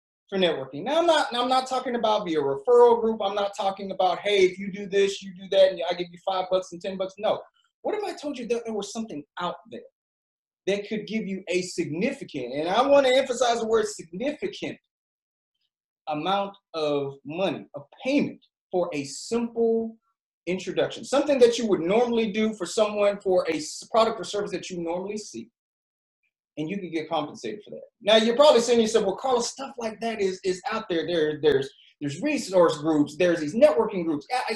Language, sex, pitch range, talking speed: English, male, 175-225 Hz, 205 wpm